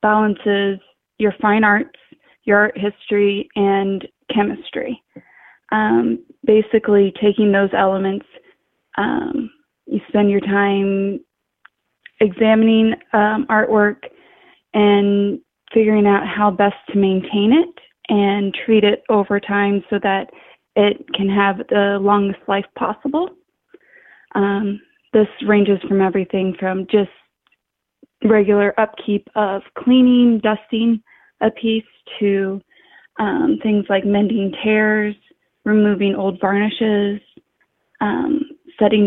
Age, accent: 20-39, American